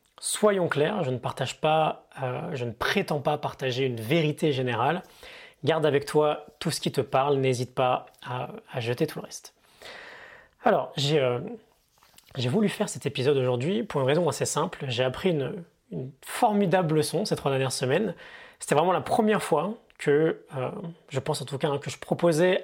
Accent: French